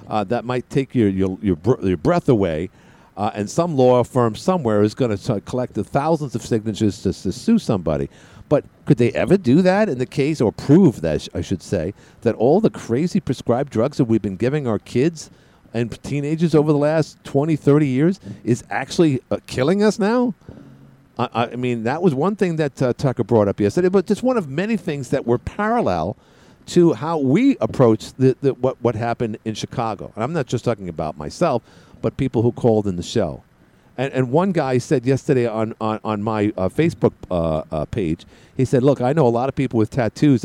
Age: 50-69